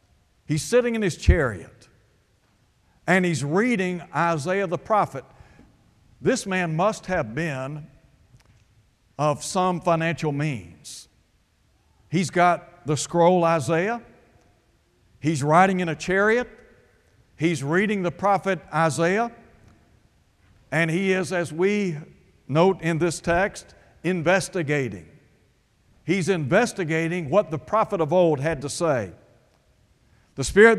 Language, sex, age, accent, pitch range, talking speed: English, male, 60-79, American, 120-185 Hz, 110 wpm